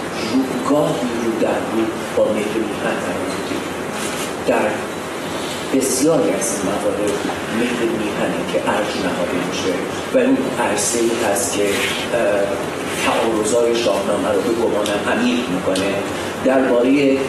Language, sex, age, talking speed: Persian, male, 40-59, 95 wpm